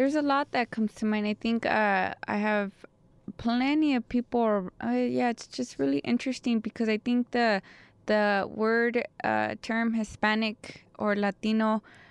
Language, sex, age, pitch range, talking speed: English, female, 20-39, 205-250 Hz, 160 wpm